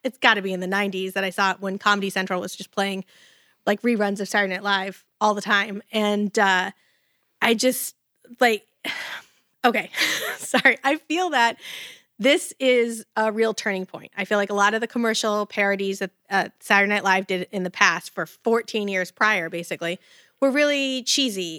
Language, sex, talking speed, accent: English, female, 185 wpm, American